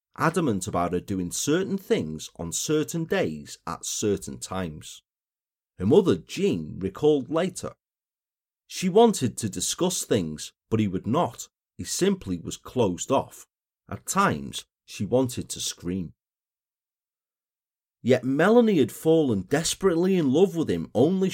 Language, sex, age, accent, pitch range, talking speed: English, male, 40-59, British, 95-150 Hz, 130 wpm